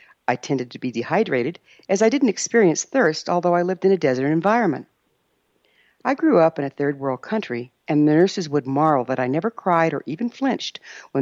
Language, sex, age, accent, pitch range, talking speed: English, female, 60-79, American, 135-215 Hz, 200 wpm